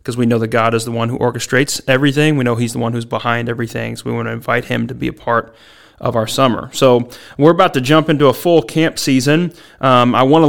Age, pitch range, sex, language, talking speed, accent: 30-49, 120-140 Hz, male, English, 265 wpm, American